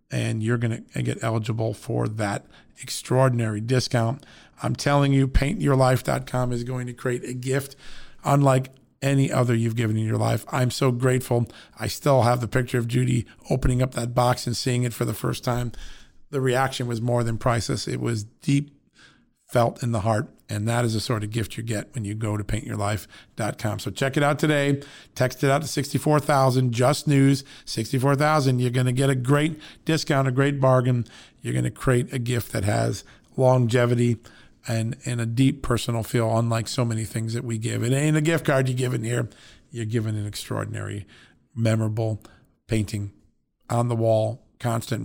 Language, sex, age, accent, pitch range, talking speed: English, male, 40-59, American, 115-135 Hz, 185 wpm